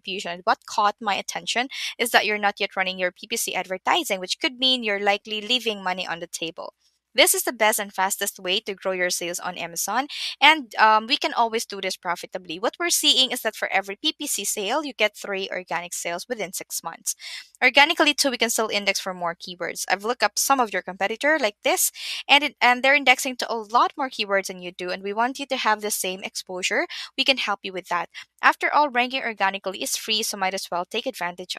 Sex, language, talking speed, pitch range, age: female, English, 225 wpm, 190-250 Hz, 20-39